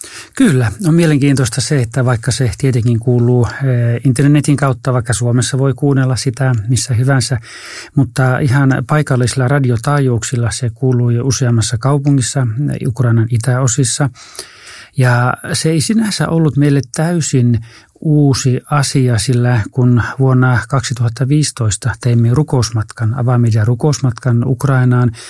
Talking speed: 115 wpm